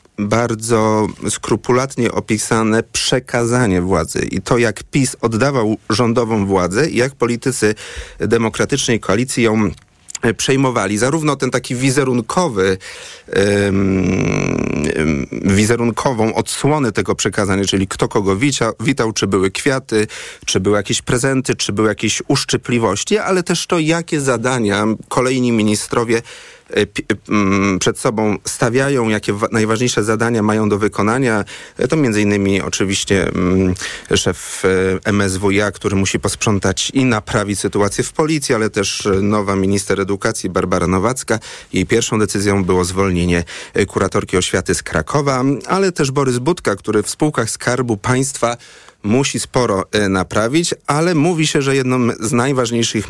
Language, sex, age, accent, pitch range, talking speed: Polish, male, 40-59, native, 100-125 Hz, 120 wpm